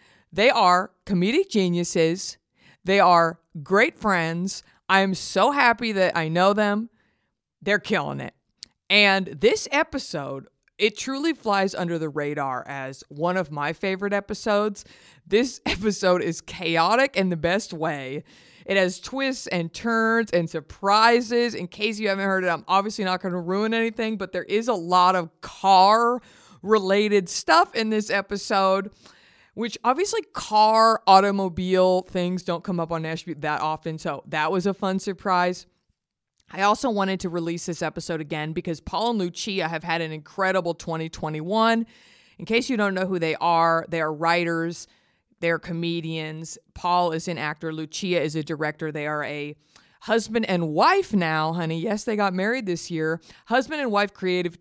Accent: American